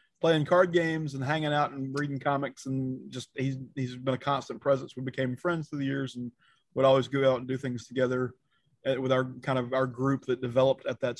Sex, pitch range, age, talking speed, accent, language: male, 130-150 Hz, 30-49, 225 wpm, American, English